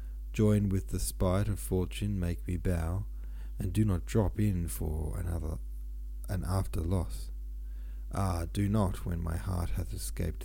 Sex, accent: male, Australian